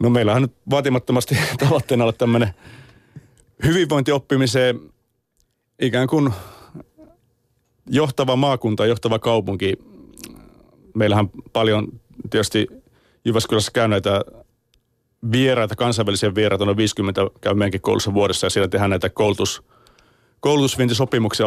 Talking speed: 100 wpm